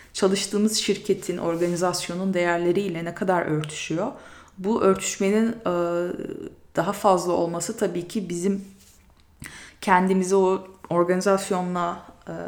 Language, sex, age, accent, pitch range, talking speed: Turkish, female, 30-49, native, 155-205 Hz, 85 wpm